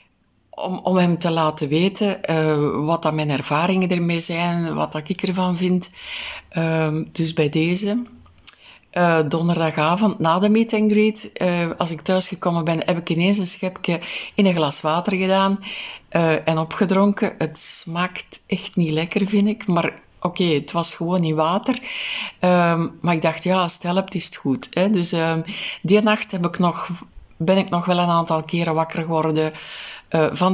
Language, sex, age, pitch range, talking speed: Dutch, female, 60-79, 160-195 Hz, 180 wpm